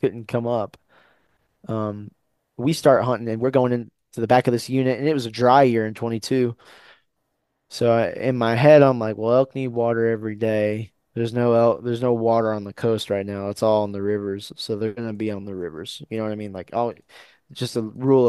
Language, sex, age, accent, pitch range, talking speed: English, male, 20-39, American, 110-135 Hz, 225 wpm